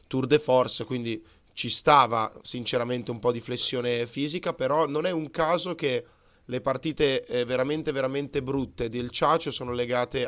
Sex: male